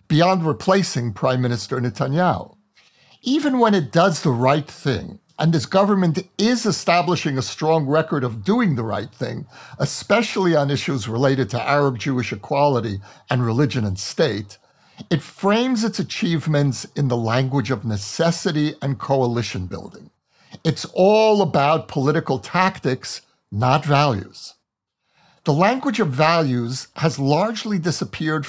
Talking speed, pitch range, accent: 130 wpm, 130-180 Hz, American